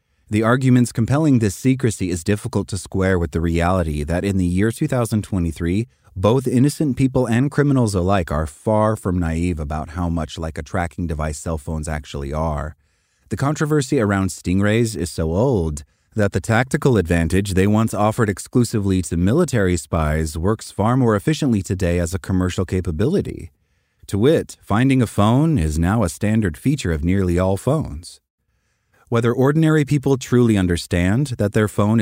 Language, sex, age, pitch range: English, male, 30-49, 85-115 Hz